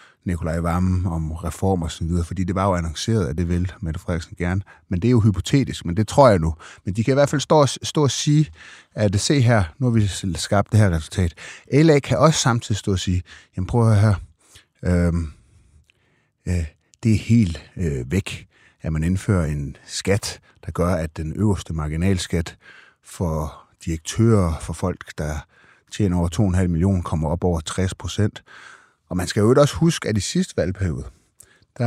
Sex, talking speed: male, 190 wpm